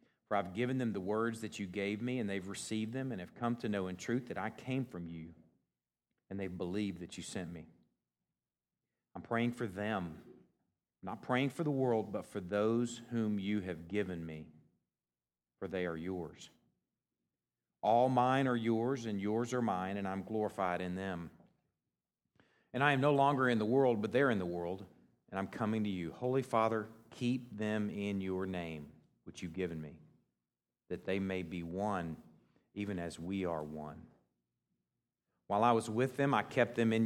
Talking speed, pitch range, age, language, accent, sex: 185 wpm, 85-115 Hz, 40-59, English, American, male